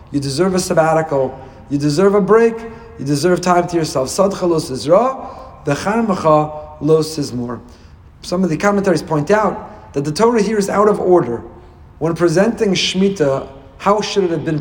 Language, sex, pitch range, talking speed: English, male, 140-200 Hz, 165 wpm